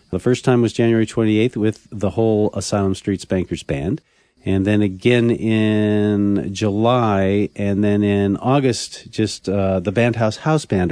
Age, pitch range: 50-69, 100-125 Hz